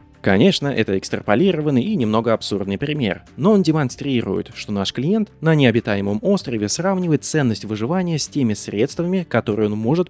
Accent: native